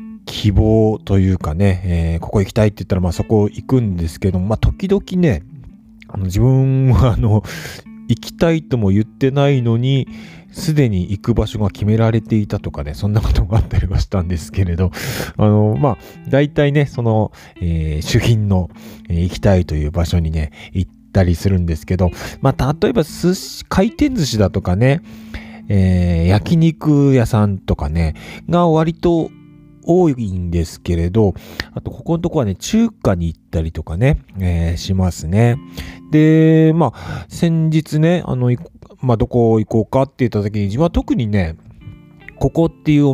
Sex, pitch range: male, 95-135 Hz